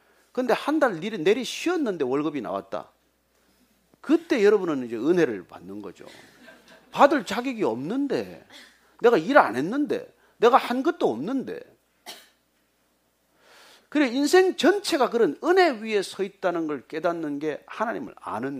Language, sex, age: Korean, male, 40-59